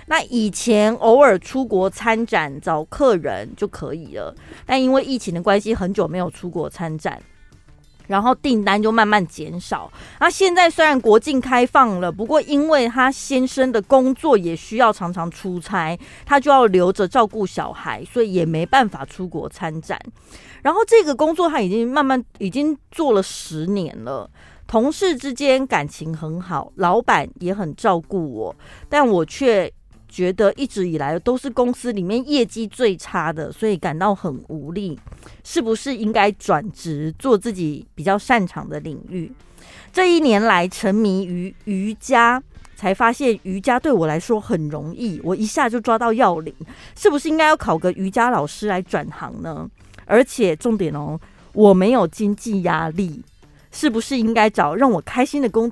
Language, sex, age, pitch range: Chinese, female, 30-49, 180-255 Hz